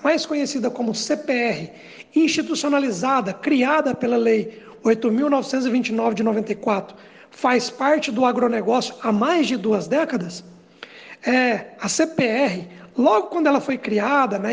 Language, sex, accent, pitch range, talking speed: Portuguese, male, Brazilian, 235-290 Hz, 115 wpm